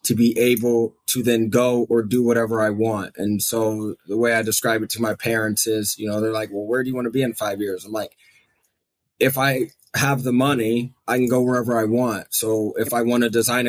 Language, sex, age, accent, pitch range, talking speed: English, male, 20-39, American, 110-120 Hz, 230 wpm